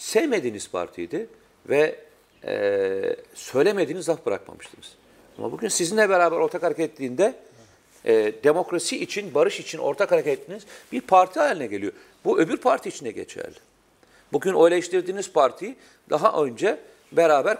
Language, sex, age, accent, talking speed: Turkish, male, 50-69, native, 125 wpm